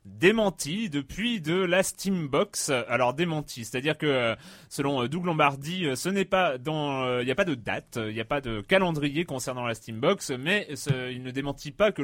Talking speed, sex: 200 wpm, male